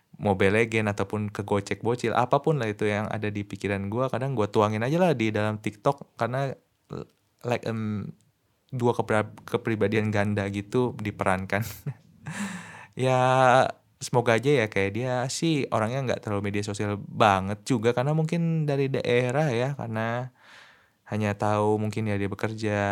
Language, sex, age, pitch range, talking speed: Indonesian, male, 20-39, 105-135 Hz, 145 wpm